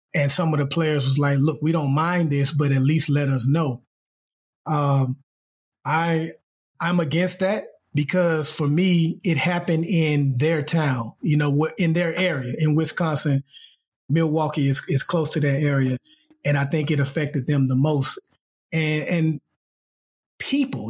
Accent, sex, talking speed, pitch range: American, male, 160 wpm, 135-160 Hz